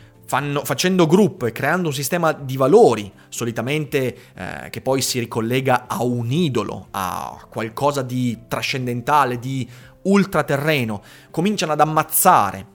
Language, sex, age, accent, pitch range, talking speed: Italian, male, 30-49, native, 125-205 Hz, 120 wpm